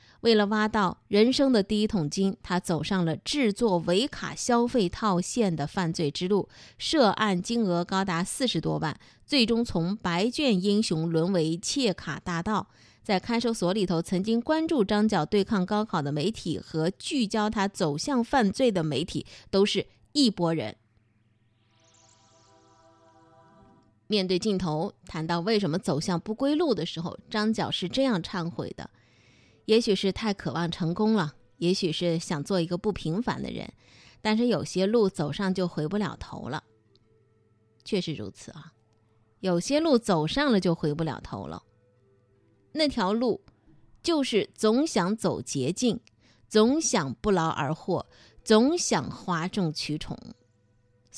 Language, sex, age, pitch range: Chinese, female, 20-39, 155-215 Hz